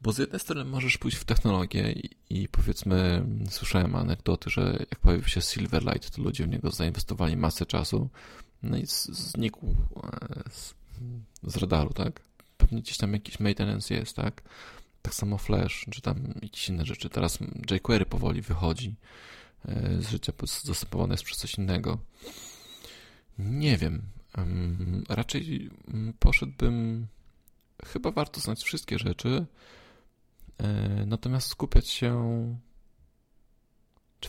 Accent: native